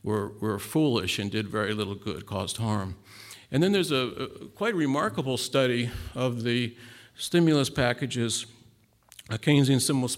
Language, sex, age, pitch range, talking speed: Italian, male, 50-69, 115-140 Hz, 145 wpm